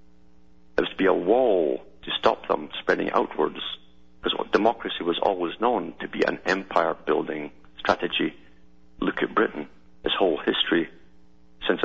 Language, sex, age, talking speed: English, male, 50-69, 140 wpm